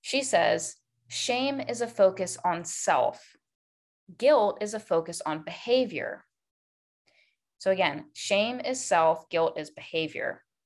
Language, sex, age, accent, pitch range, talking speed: English, female, 20-39, American, 160-225 Hz, 125 wpm